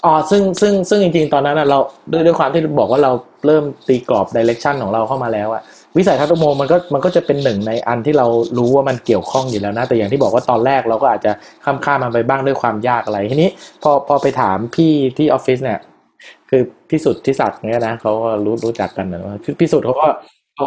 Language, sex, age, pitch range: Thai, male, 20-39, 115-155 Hz